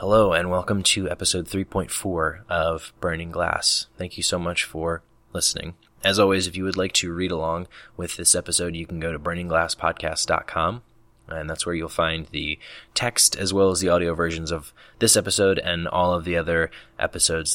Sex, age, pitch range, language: male, 20-39, 80-95 Hz, English